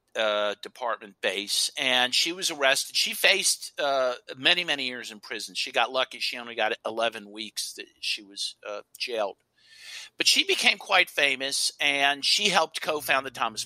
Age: 50-69